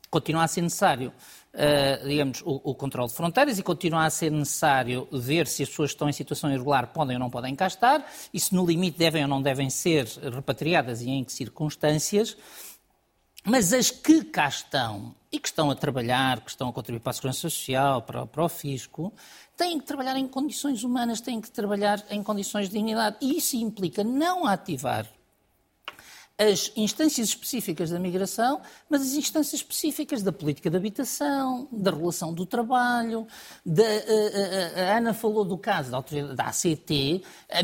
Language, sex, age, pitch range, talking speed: Portuguese, male, 50-69, 160-245 Hz, 180 wpm